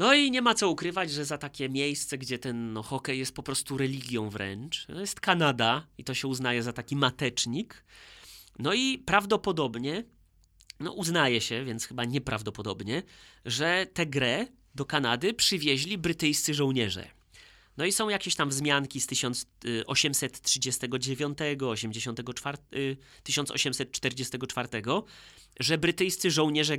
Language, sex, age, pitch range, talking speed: Polish, male, 30-49, 120-150 Hz, 130 wpm